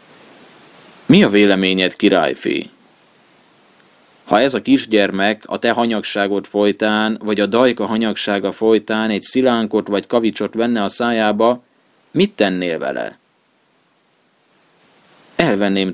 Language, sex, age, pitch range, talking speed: Hungarian, male, 20-39, 100-115 Hz, 105 wpm